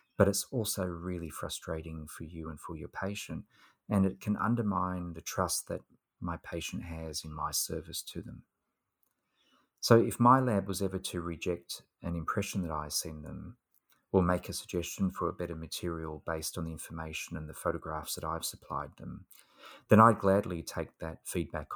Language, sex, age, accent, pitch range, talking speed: English, male, 30-49, Australian, 80-95 Hz, 180 wpm